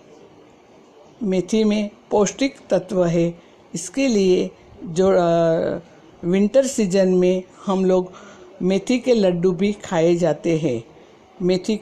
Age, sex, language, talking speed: 60-79, female, Hindi, 110 wpm